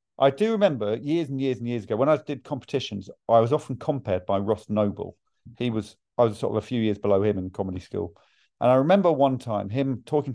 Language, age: English, 40-59